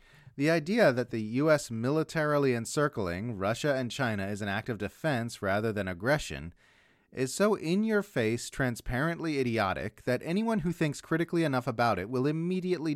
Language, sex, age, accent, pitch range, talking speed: English, male, 30-49, American, 115-155 Hz, 155 wpm